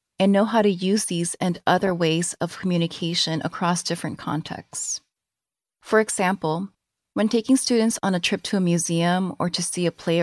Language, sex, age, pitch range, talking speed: English, female, 30-49, 165-200 Hz, 175 wpm